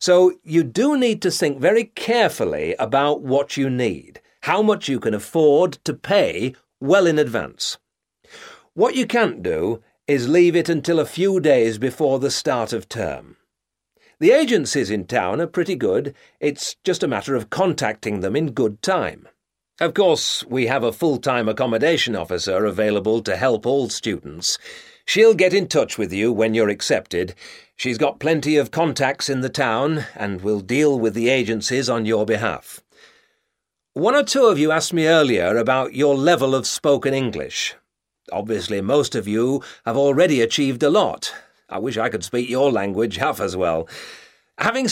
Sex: male